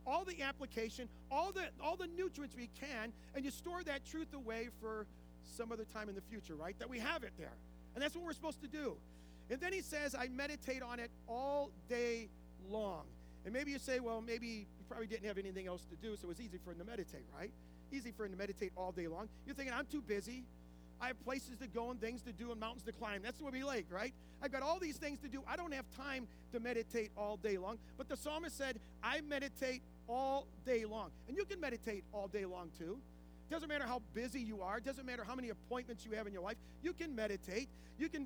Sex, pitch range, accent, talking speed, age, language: male, 205-275 Hz, American, 245 wpm, 40-59, English